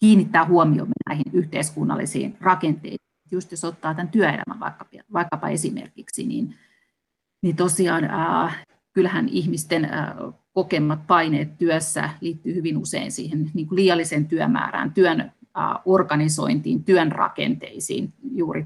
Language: Finnish